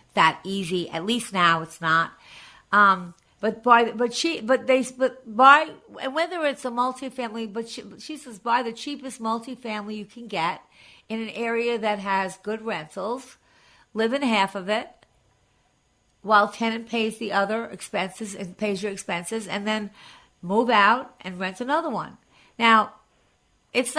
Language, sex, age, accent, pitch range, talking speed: English, female, 50-69, American, 200-245 Hz, 160 wpm